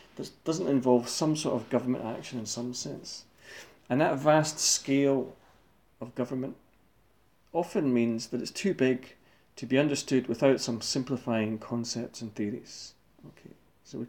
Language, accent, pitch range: English, British, 115-140 Hz